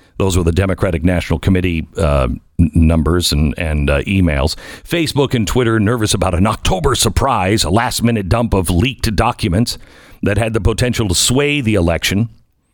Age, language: 50-69, English